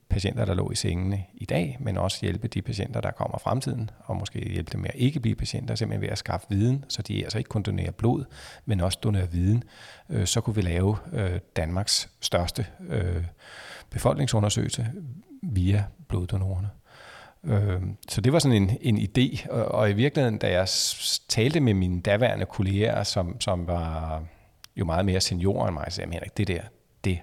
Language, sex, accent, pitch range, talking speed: Danish, male, native, 95-120 Hz, 175 wpm